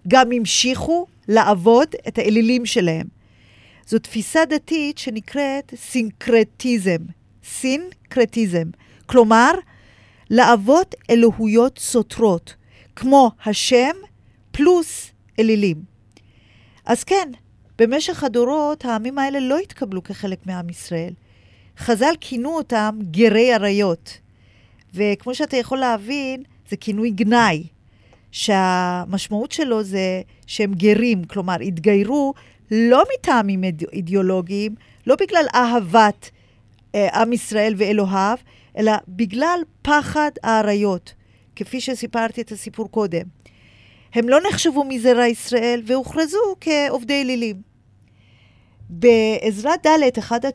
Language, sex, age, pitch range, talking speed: Hebrew, female, 40-59, 185-255 Hz, 95 wpm